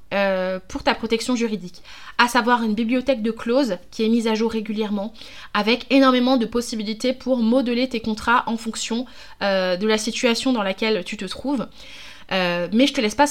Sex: female